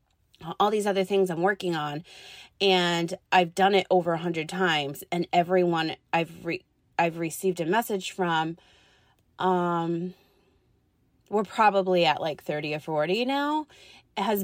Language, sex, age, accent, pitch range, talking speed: English, female, 30-49, American, 170-195 Hz, 135 wpm